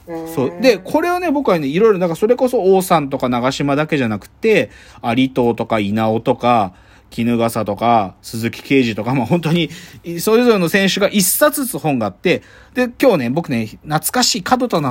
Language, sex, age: Japanese, male, 40-59